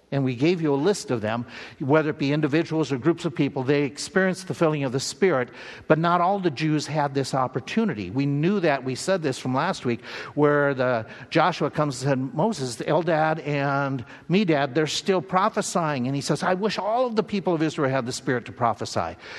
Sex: male